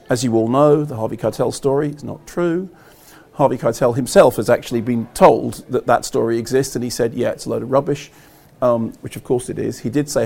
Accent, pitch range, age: British, 120-145 Hz, 40-59